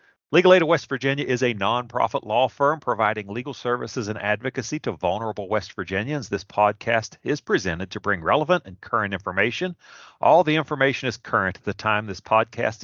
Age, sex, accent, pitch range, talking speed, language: 40-59, male, American, 105-135 Hz, 180 wpm, English